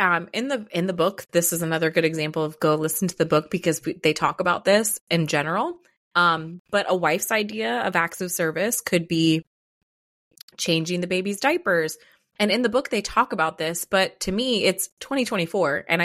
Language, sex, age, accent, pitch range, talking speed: English, female, 20-39, American, 165-210 Hz, 200 wpm